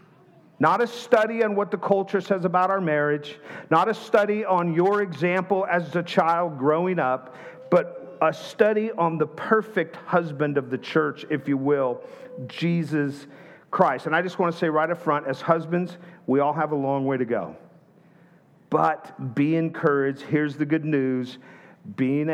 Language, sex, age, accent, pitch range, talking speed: English, male, 50-69, American, 135-180 Hz, 170 wpm